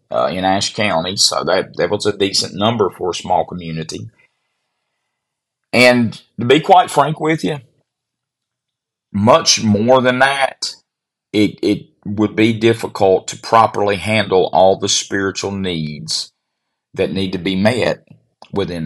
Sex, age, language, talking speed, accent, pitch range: male, 40-59, English, 140 wpm, American, 100-130 Hz